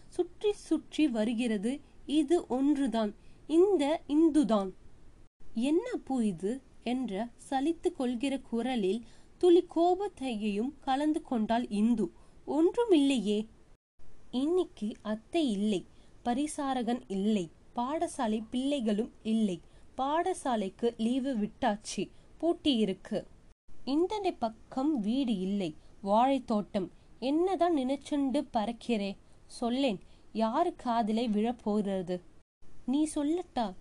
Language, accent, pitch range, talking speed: Tamil, native, 225-305 Hz, 80 wpm